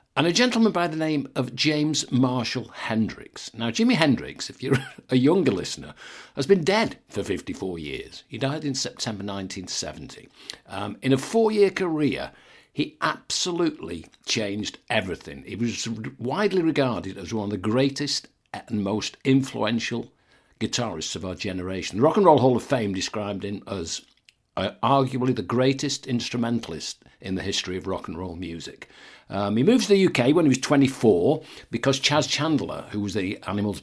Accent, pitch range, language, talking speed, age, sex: British, 105-145 Hz, English, 170 wpm, 60-79, male